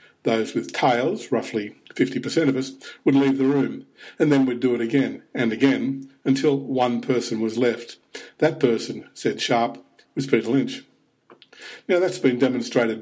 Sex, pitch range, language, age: male, 120-140 Hz, English, 50-69